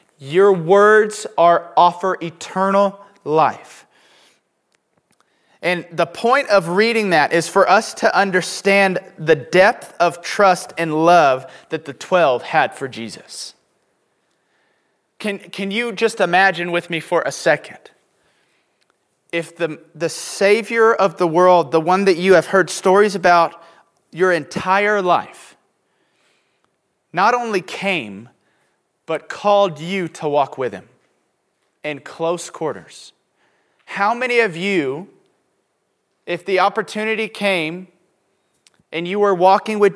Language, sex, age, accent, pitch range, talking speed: English, male, 30-49, American, 165-195 Hz, 125 wpm